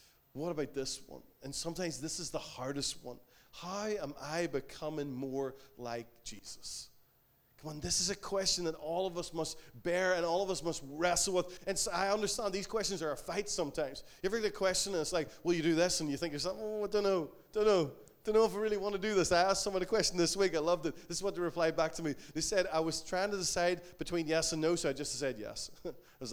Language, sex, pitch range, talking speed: English, male, 155-195 Hz, 260 wpm